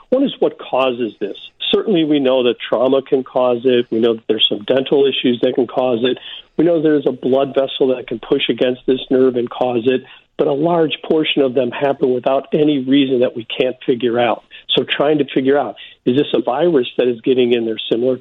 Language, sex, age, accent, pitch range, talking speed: English, male, 50-69, American, 120-160 Hz, 225 wpm